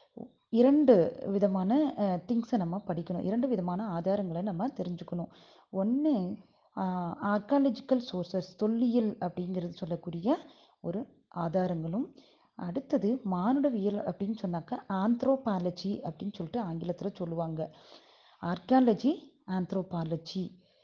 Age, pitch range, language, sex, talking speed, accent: 30-49, 180-245 Hz, Tamil, female, 85 wpm, native